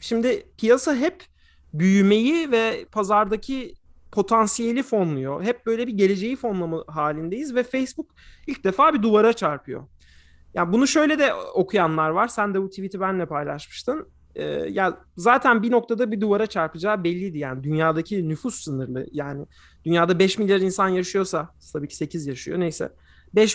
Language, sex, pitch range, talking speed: Turkish, male, 170-230 Hz, 150 wpm